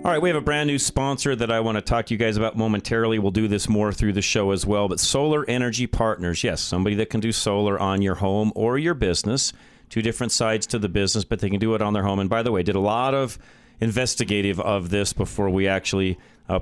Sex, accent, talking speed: male, American, 260 wpm